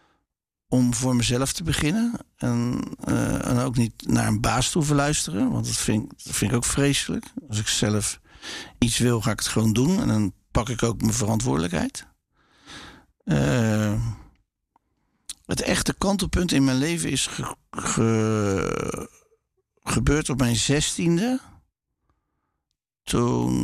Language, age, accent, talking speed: English, 50-69, Dutch, 140 wpm